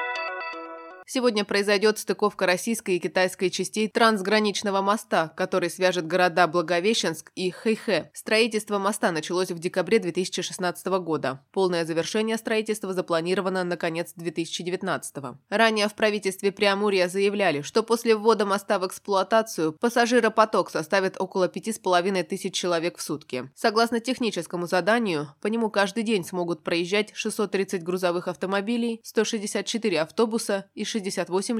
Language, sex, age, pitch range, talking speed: Russian, female, 20-39, 175-215 Hz, 130 wpm